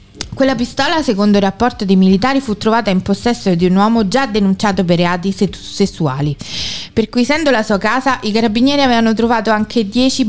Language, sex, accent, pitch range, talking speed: Italian, female, native, 195-245 Hz, 180 wpm